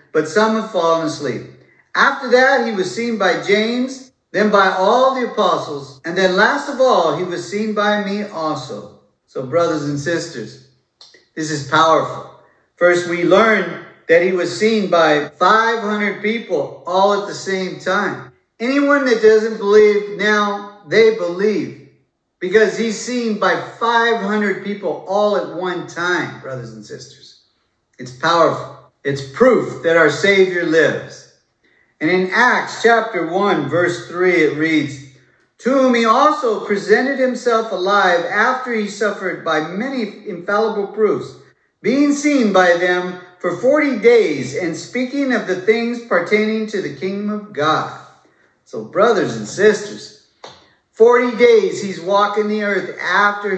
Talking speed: 145 wpm